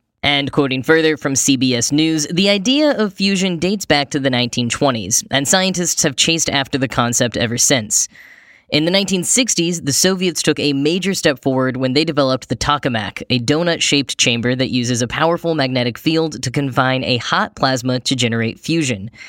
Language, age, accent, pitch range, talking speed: English, 10-29, American, 130-165 Hz, 175 wpm